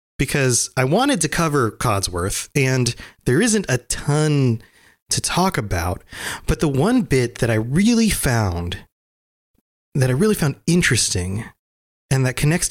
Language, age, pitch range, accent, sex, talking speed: English, 30-49, 105-150 Hz, American, male, 140 wpm